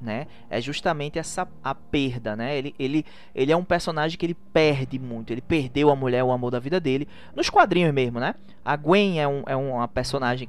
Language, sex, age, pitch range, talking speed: Portuguese, male, 20-39, 115-165 Hz, 200 wpm